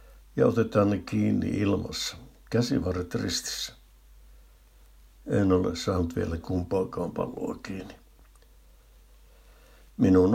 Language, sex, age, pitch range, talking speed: Finnish, male, 60-79, 85-100 Hz, 85 wpm